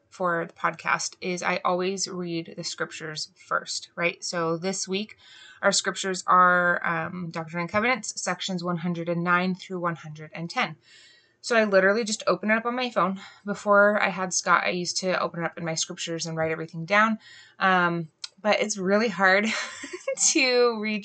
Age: 20-39